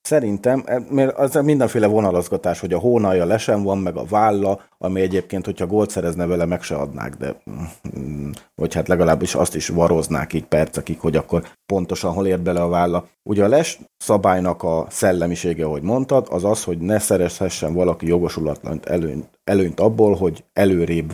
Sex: male